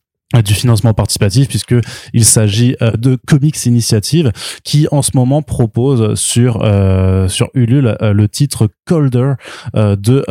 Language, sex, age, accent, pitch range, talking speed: French, male, 20-39, French, 100-120 Hz, 140 wpm